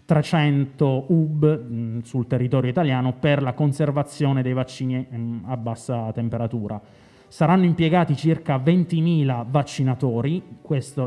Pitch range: 125-145 Hz